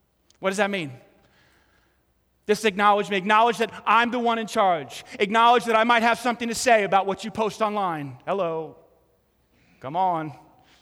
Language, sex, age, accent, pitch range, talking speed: English, male, 30-49, American, 195-250 Hz, 165 wpm